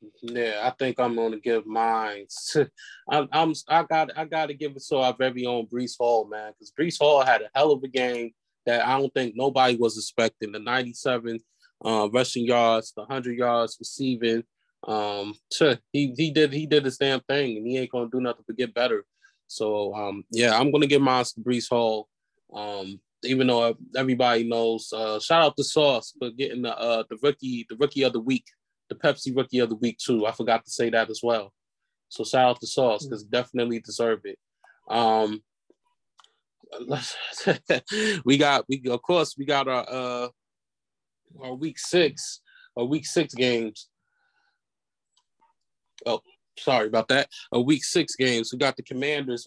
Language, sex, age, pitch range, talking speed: English, male, 20-39, 115-140 Hz, 185 wpm